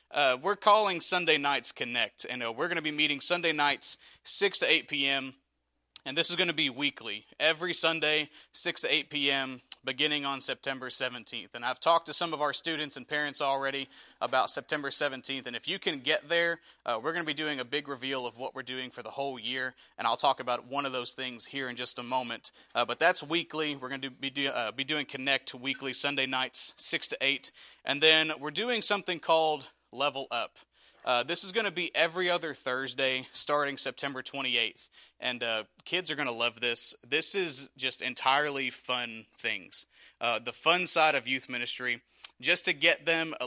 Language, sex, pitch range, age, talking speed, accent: English, male, 130-160 Hz, 30-49, 205 wpm, American